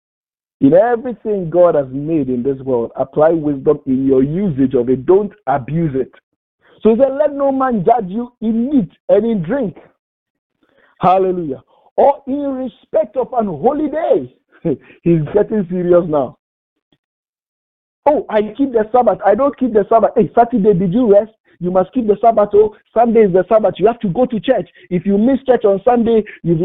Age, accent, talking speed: 50-69, Nigerian, 180 wpm